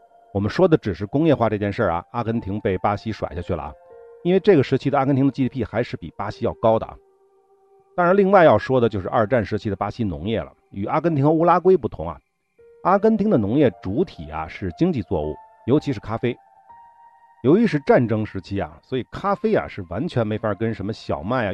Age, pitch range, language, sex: 50-69, 100-155 Hz, Chinese, male